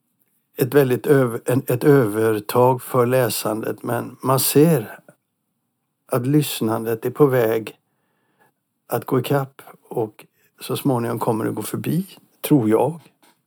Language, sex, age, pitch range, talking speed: Swedish, male, 60-79, 125-150 Hz, 125 wpm